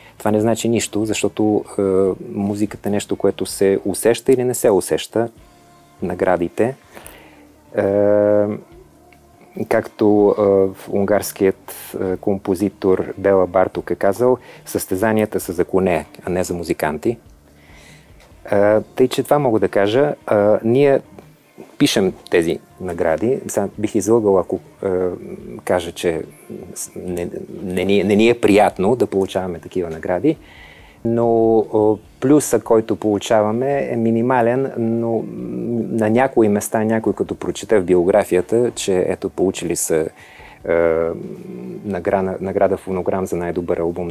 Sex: male